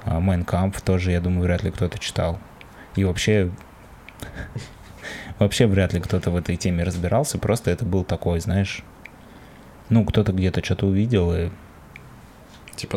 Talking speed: 140 wpm